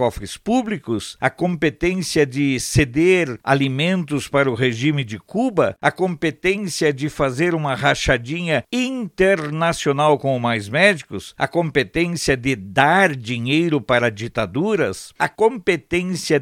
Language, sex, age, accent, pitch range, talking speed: Portuguese, male, 60-79, Brazilian, 145-195 Hz, 115 wpm